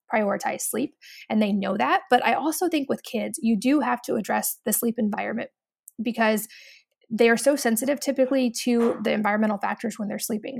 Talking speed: 185 wpm